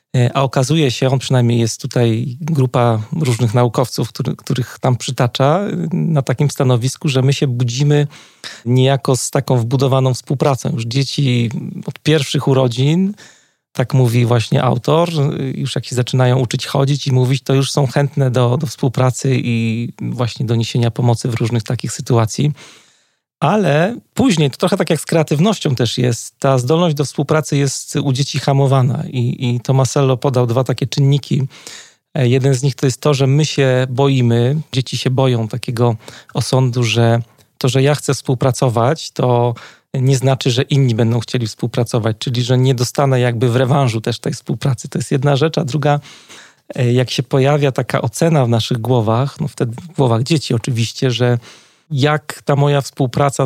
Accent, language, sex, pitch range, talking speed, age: native, Polish, male, 125-145 Hz, 165 wpm, 40-59